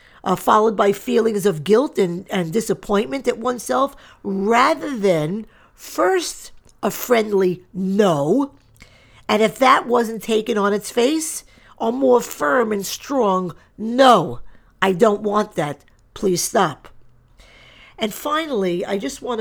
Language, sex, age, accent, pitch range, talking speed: English, female, 50-69, American, 175-225 Hz, 130 wpm